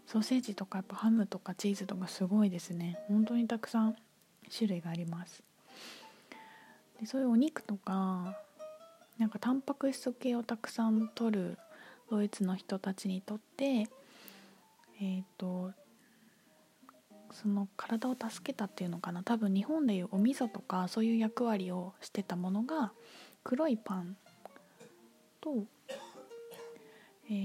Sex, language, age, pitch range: female, Japanese, 20-39, 185-235 Hz